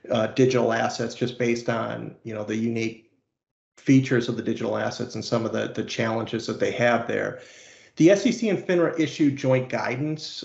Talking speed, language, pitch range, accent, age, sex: 185 wpm, English, 120-140 Hz, American, 40-59, male